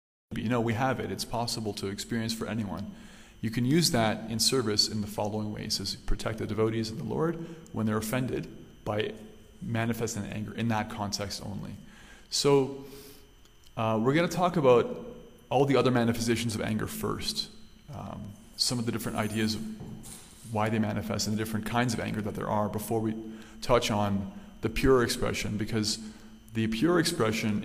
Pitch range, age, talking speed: 105-120 Hz, 30-49, 180 wpm